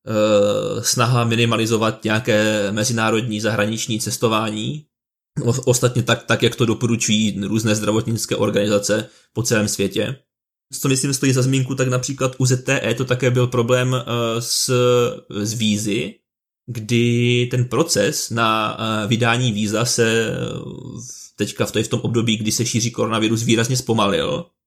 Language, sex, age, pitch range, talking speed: Czech, male, 20-39, 110-125 Hz, 125 wpm